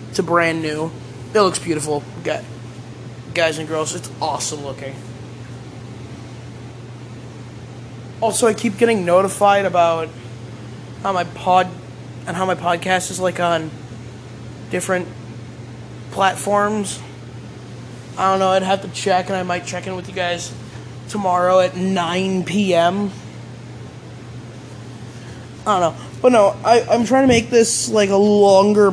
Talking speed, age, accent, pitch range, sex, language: 130 wpm, 20-39, American, 120-190 Hz, male, English